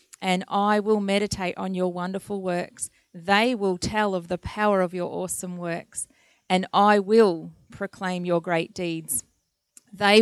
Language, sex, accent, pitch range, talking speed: English, female, Australian, 180-210 Hz, 155 wpm